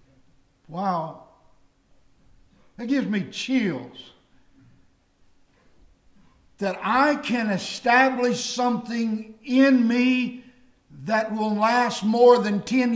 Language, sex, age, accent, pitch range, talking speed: English, male, 60-79, American, 180-235 Hz, 85 wpm